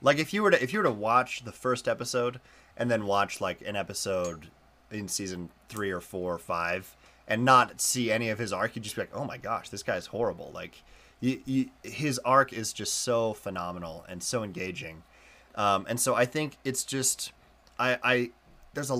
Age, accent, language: 30-49, American, English